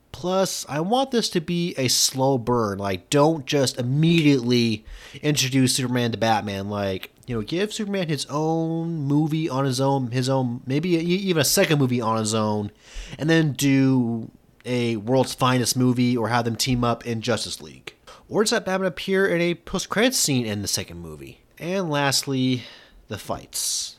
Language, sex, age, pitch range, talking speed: English, male, 30-49, 120-165 Hz, 175 wpm